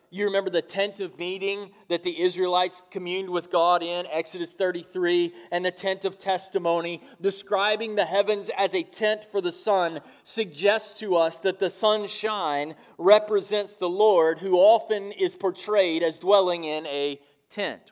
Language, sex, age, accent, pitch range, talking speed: English, male, 30-49, American, 170-210 Hz, 155 wpm